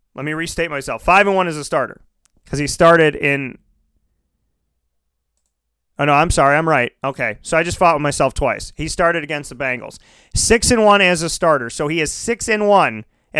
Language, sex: English, male